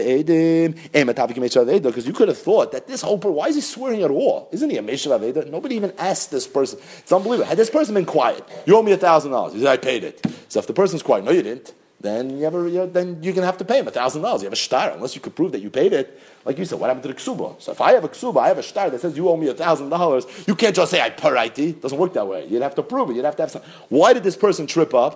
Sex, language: male, English